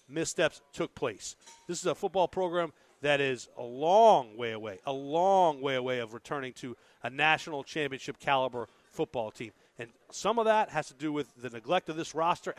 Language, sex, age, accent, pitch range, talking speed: English, male, 40-59, American, 150-210 Hz, 190 wpm